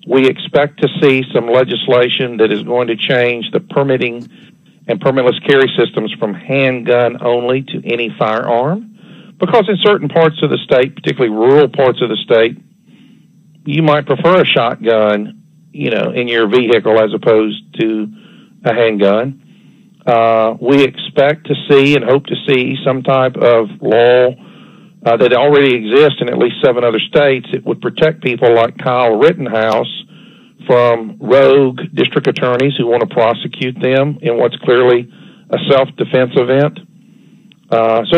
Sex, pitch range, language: male, 120-160 Hz, English